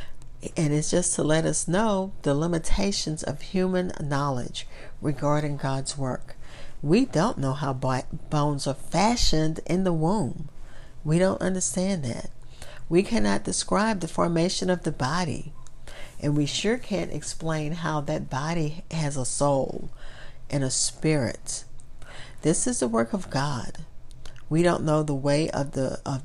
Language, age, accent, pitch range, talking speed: English, 50-69, American, 140-170 Hz, 150 wpm